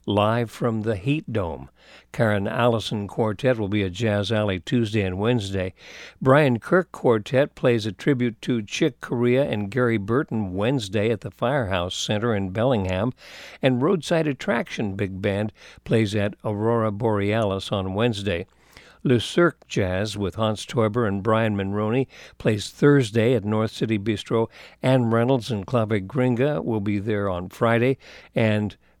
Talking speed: 150 wpm